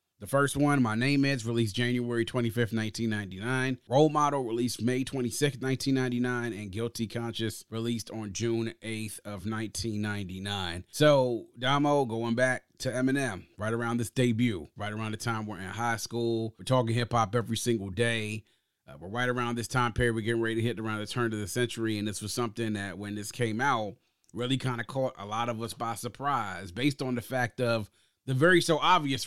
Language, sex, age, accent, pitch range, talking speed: English, male, 30-49, American, 115-155 Hz, 195 wpm